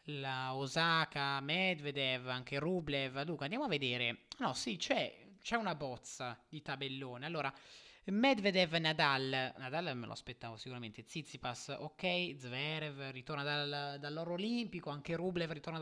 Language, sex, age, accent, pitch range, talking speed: Italian, male, 20-39, native, 130-185 Hz, 135 wpm